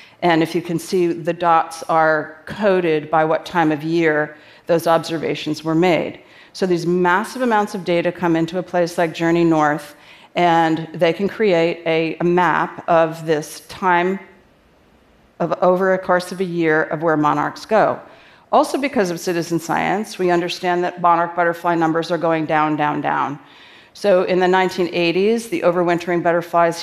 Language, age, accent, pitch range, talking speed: French, 40-59, American, 165-180 Hz, 165 wpm